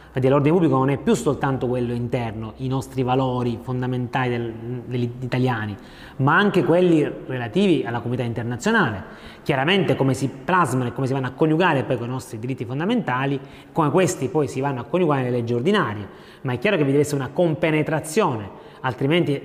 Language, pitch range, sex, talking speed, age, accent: Italian, 125-170 Hz, male, 180 wpm, 30-49, native